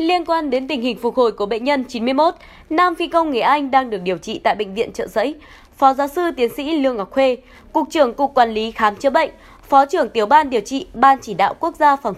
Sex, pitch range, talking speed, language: female, 235-305 Hz, 260 wpm, Vietnamese